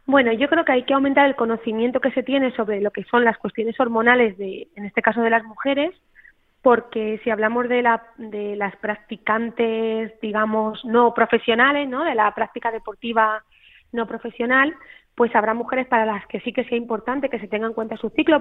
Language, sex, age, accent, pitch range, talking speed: Spanish, female, 20-39, Spanish, 220-255 Hz, 200 wpm